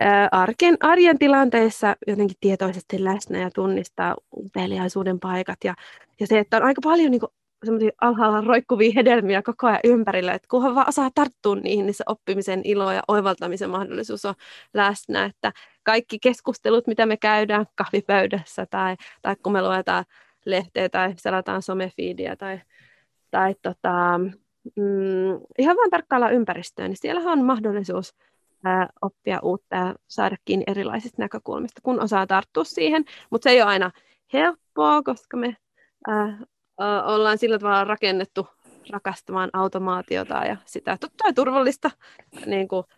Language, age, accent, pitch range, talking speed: Finnish, 20-39, native, 185-240 Hz, 140 wpm